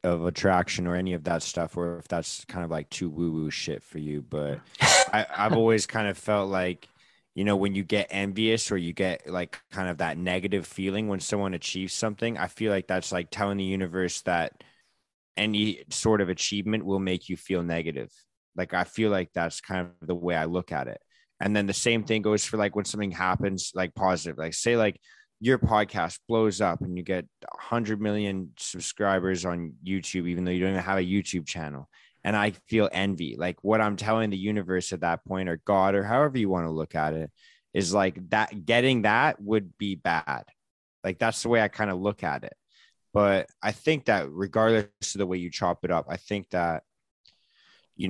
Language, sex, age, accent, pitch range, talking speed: English, male, 20-39, American, 90-105 Hz, 215 wpm